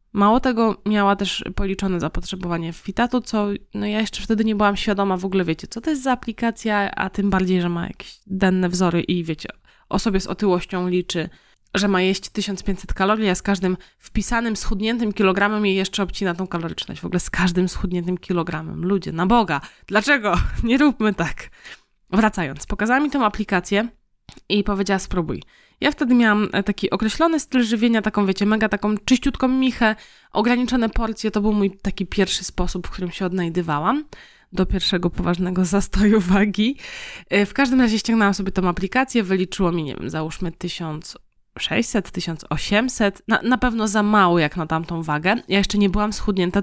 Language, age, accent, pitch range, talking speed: Polish, 20-39, native, 185-225 Hz, 170 wpm